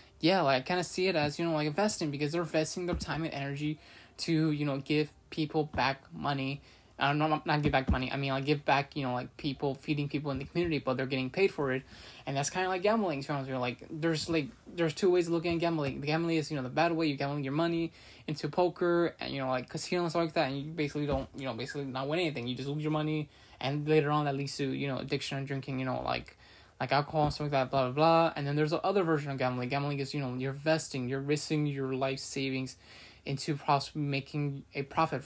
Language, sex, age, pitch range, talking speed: English, male, 20-39, 135-165 Hz, 260 wpm